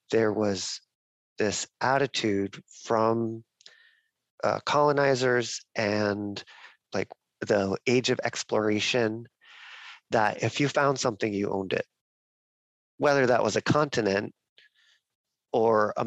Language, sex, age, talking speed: English, male, 40-59, 105 wpm